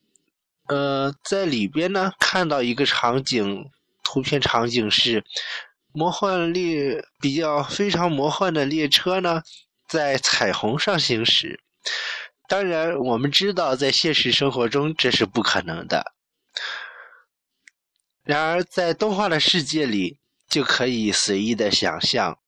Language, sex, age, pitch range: Chinese, male, 20-39, 135-190 Hz